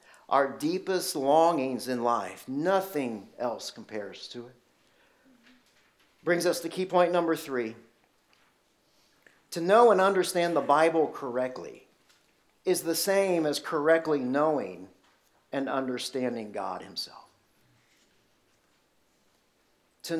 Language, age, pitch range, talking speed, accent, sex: English, 50-69, 140-195 Hz, 105 wpm, American, male